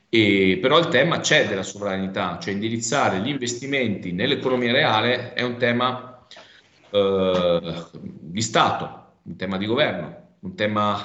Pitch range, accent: 90-120 Hz, native